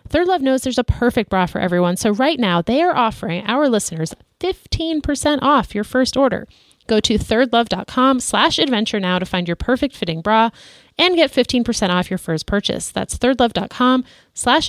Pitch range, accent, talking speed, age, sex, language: 180-255 Hz, American, 180 wpm, 30-49, female, English